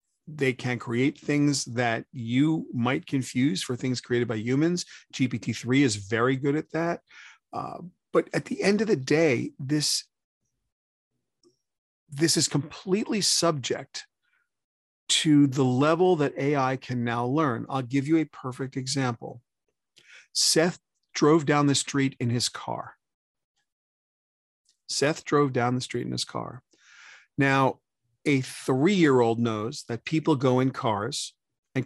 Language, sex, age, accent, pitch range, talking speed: English, male, 40-59, American, 125-155 Hz, 135 wpm